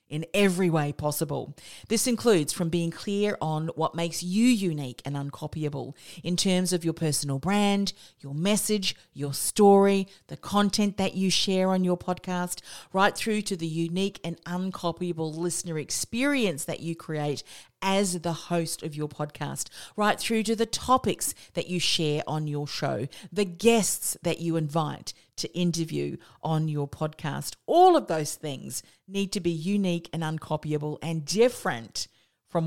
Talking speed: 160 wpm